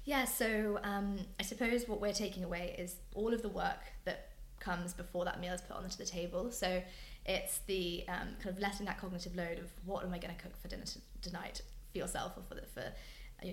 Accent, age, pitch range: British, 20-39, 180-200 Hz